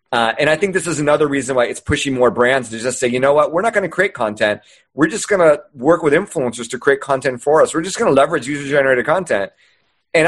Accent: American